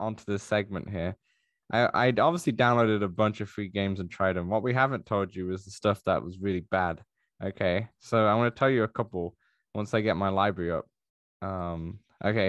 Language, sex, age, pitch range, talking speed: English, male, 10-29, 100-125 Hz, 215 wpm